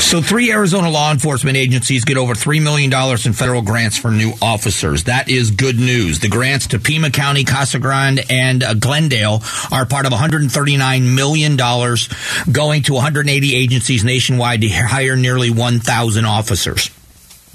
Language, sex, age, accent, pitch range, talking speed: English, male, 40-59, American, 120-140 Hz, 155 wpm